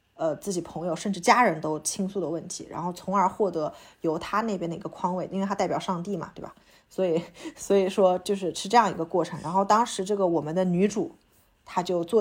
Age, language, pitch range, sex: 20-39, Chinese, 180-220 Hz, female